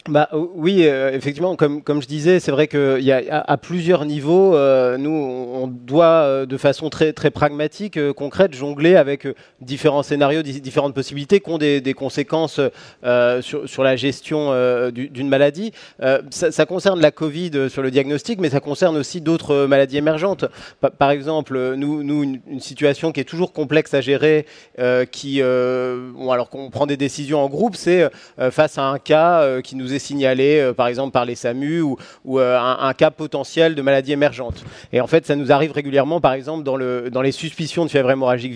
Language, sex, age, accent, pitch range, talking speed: French, male, 30-49, French, 130-155 Hz, 200 wpm